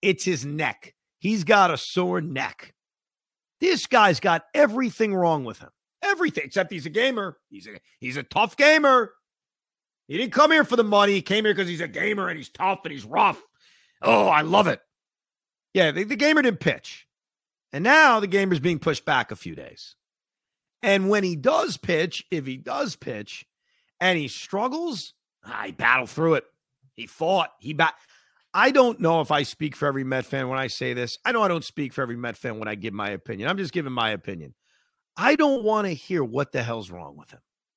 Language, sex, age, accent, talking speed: English, male, 40-59, American, 205 wpm